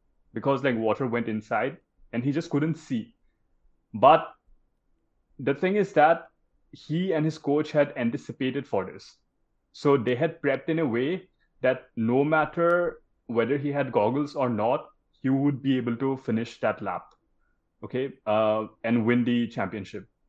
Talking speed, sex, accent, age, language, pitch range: 155 wpm, male, native, 30-49, Hindi, 120-155 Hz